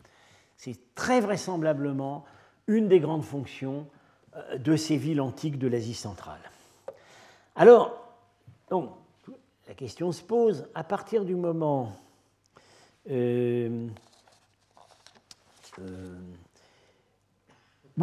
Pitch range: 130-185 Hz